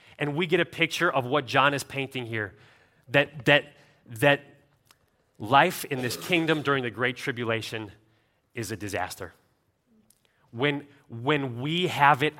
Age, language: 30-49, English